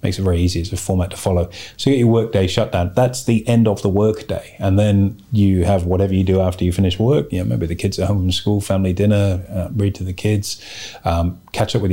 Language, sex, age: English, male, 30-49